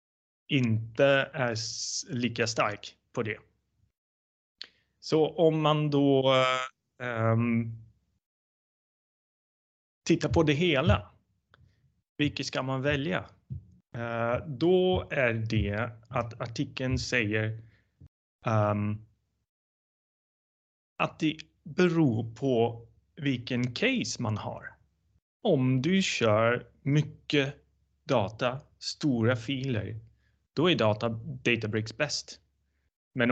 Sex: male